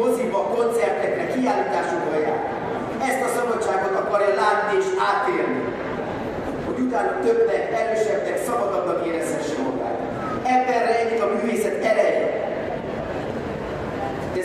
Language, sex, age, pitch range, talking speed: Hungarian, male, 40-59, 190-235 Hz, 105 wpm